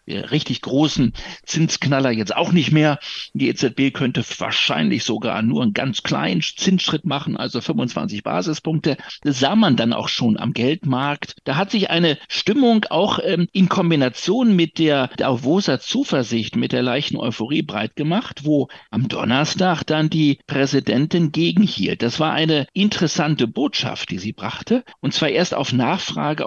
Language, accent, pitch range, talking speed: German, German, 140-180 Hz, 155 wpm